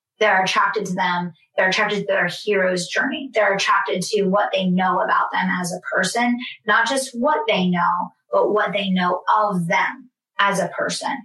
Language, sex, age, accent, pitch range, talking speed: English, female, 30-49, American, 185-220 Hz, 185 wpm